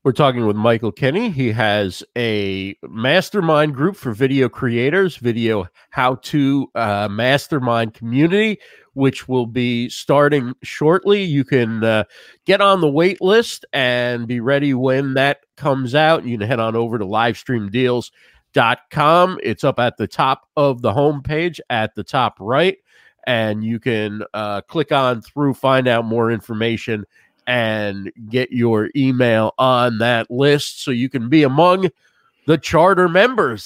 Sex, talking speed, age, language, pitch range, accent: male, 150 wpm, 40-59, English, 120-165 Hz, American